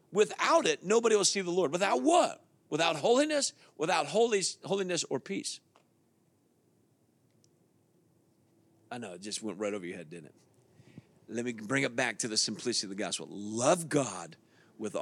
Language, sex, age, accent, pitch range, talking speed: English, male, 50-69, American, 125-185 Hz, 165 wpm